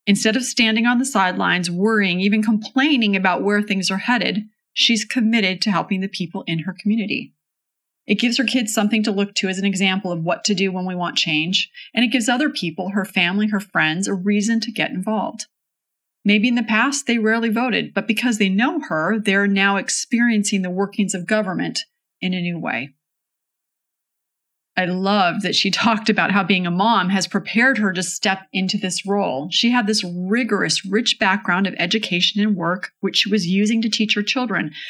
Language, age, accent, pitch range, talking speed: English, 30-49, American, 190-235 Hz, 200 wpm